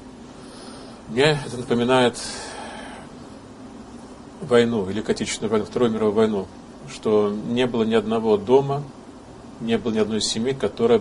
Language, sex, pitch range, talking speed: Russian, male, 110-180 Hz, 120 wpm